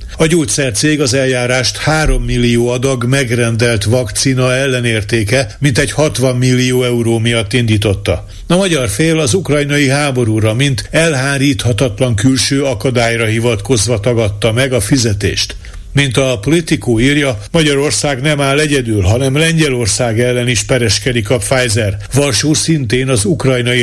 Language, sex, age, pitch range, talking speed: Hungarian, male, 60-79, 115-140 Hz, 130 wpm